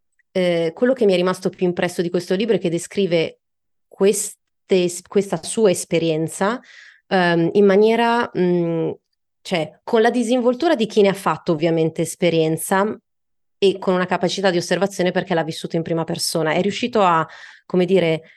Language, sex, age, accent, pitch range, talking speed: Italian, female, 30-49, native, 165-200 Hz, 165 wpm